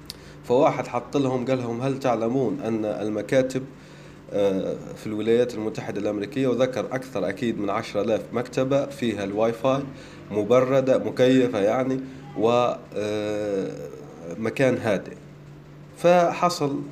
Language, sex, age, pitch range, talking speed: Arabic, male, 30-49, 110-160 Hz, 105 wpm